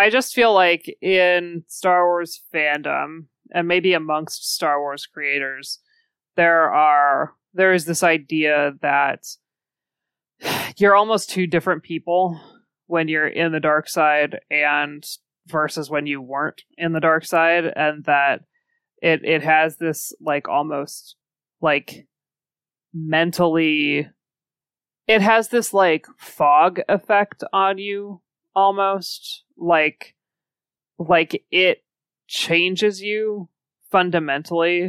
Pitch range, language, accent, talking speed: 150-185 Hz, English, American, 115 wpm